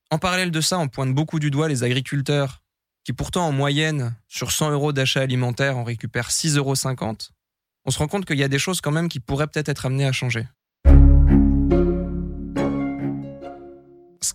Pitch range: 115-145 Hz